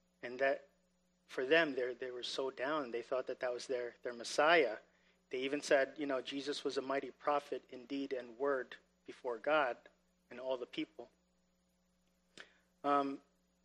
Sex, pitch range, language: male, 125-170 Hz, English